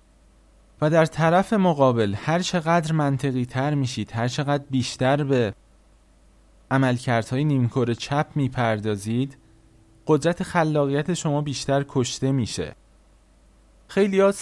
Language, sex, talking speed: Persian, male, 100 wpm